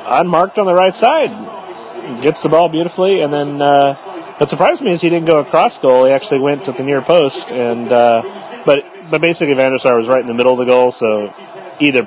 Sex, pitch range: male, 120-160 Hz